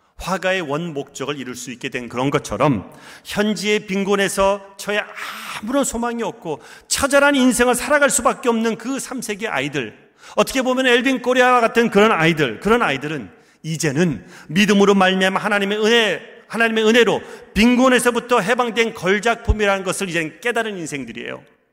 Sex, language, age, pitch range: male, Korean, 40-59, 160-235 Hz